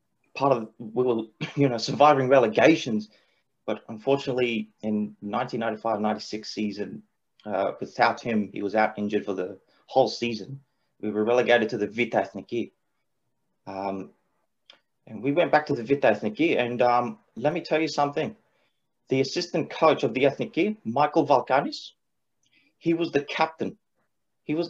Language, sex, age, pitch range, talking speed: English, male, 30-49, 110-145 Hz, 150 wpm